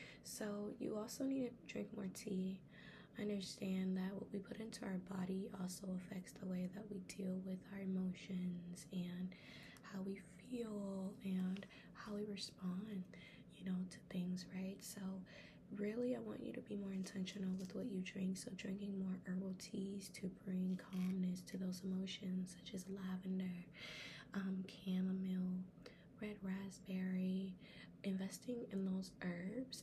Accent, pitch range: American, 185-200 Hz